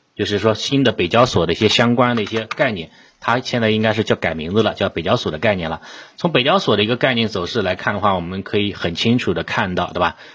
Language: Chinese